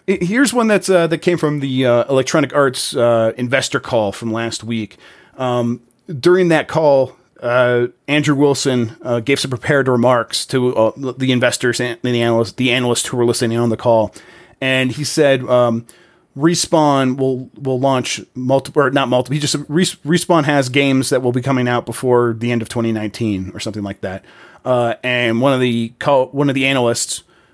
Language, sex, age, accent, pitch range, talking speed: English, male, 30-49, American, 120-150 Hz, 185 wpm